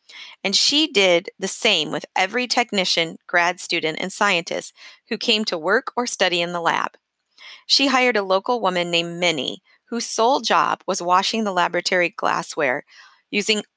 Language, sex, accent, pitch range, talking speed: English, female, American, 175-225 Hz, 160 wpm